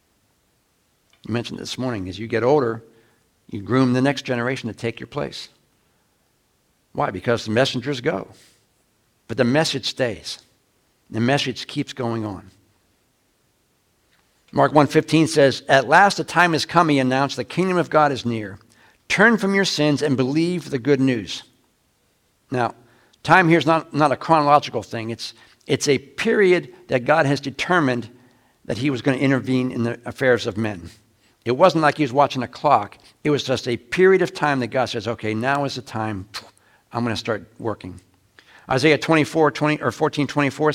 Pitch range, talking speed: 115-155 Hz, 170 wpm